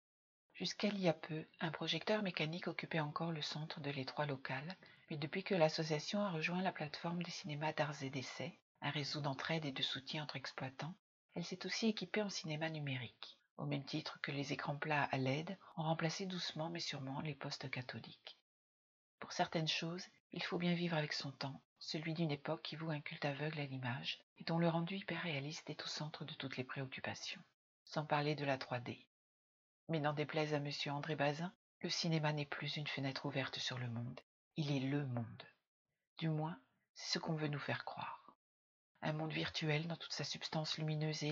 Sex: female